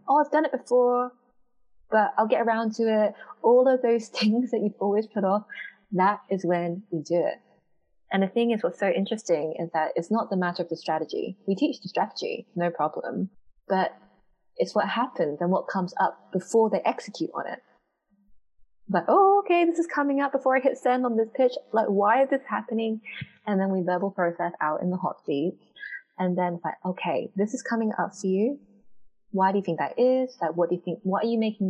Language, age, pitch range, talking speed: English, 20-39, 175-235 Hz, 220 wpm